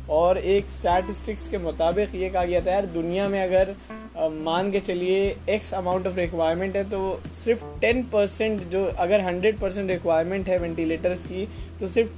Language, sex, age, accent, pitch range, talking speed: Hindi, male, 20-39, native, 170-210 Hz, 175 wpm